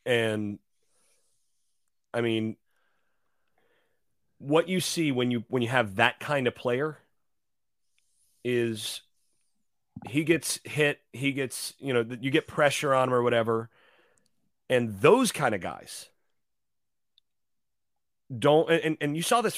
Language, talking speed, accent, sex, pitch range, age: English, 125 wpm, American, male, 120-160 Hz, 30-49